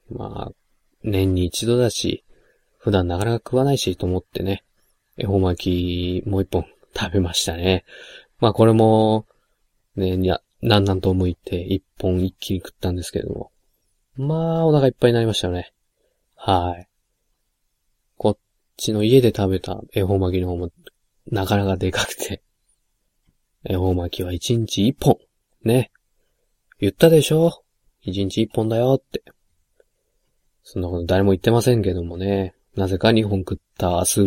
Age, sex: 20-39, male